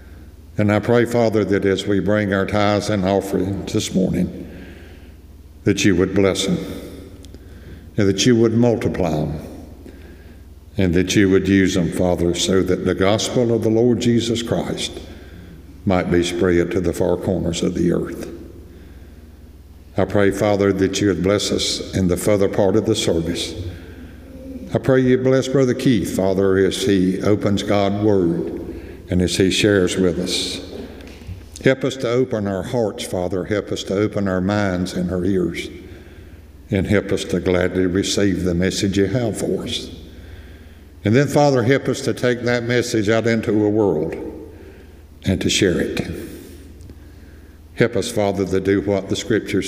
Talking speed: 165 wpm